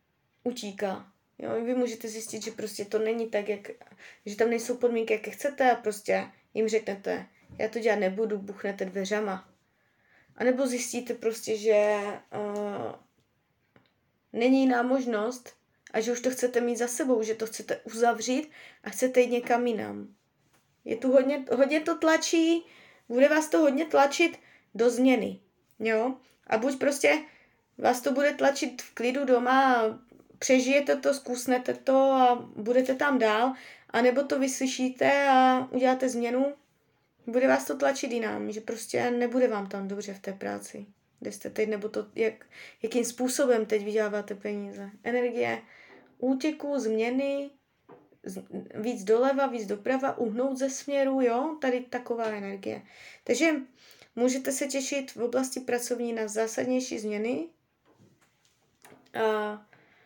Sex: female